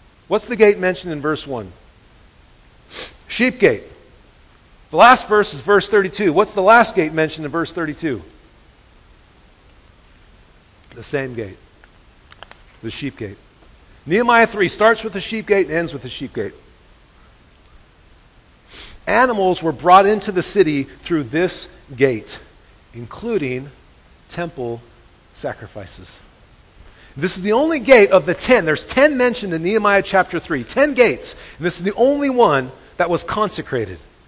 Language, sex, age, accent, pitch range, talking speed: English, male, 40-59, American, 135-210 Hz, 140 wpm